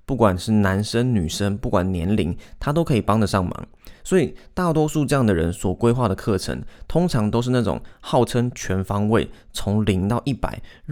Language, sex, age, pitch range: Chinese, male, 20-39, 100-120 Hz